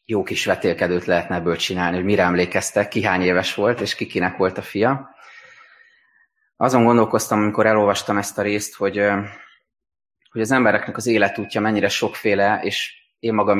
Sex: male